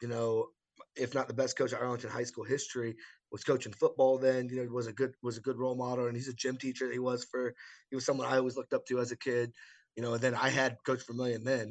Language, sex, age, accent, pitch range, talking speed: English, male, 20-39, American, 120-145 Hz, 285 wpm